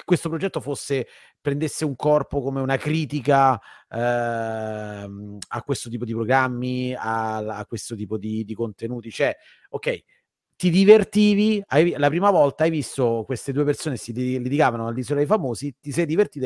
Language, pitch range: Italian, 120-150 Hz